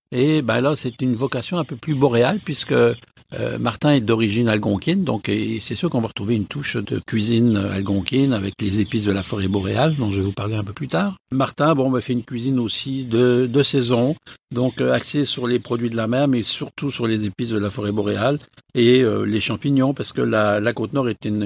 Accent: French